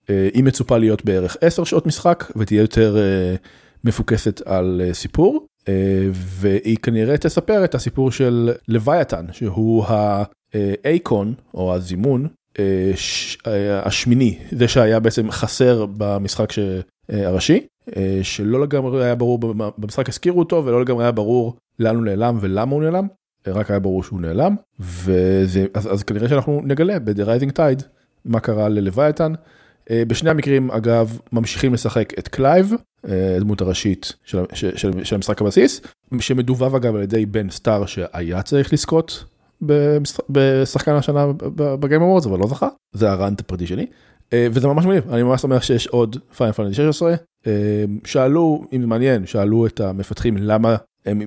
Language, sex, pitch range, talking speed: Hebrew, male, 100-135 Hz, 135 wpm